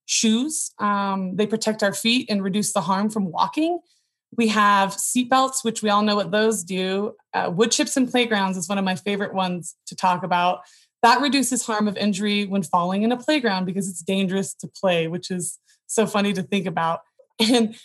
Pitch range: 195-240 Hz